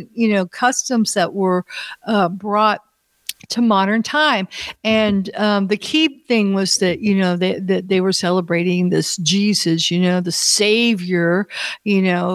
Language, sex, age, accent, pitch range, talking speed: English, female, 50-69, American, 185-220 Hz, 155 wpm